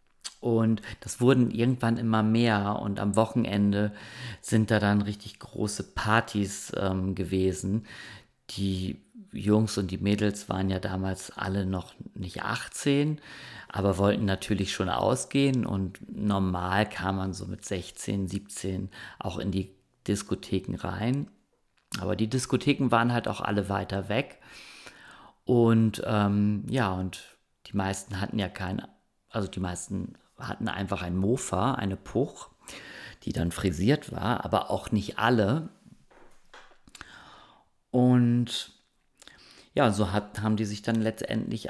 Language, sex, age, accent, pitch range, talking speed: German, male, 40-59, German, 95-110 Hz, 130 wpm